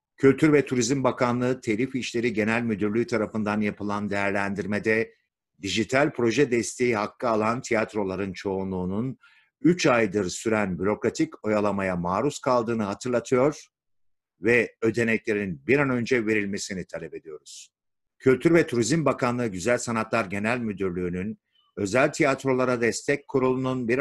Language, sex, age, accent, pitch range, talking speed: Turkish, male, 60-79, native, 110-135 Hz, 115 wpm